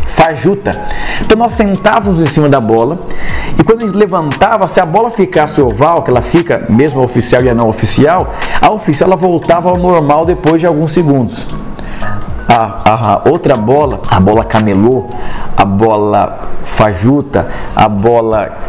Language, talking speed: Portuguese, 150 wpm